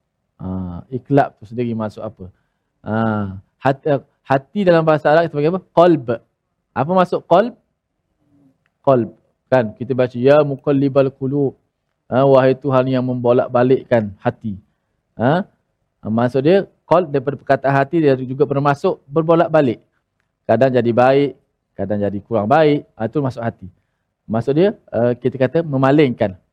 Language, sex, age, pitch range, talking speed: Malayalam, male, 20-39, 120-160 Hz, 135 wpm